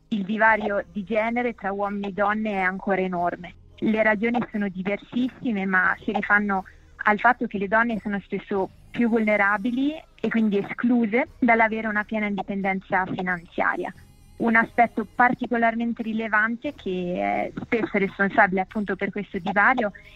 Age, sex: 20-39, female